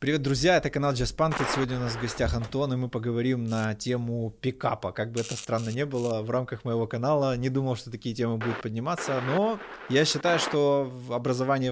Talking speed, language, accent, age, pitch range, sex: 200 wpm, Russian, native, 20-39, 115-135 Hz, male